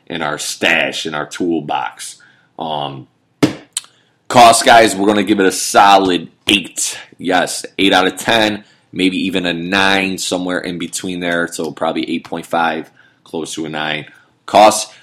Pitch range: 80-100 Hz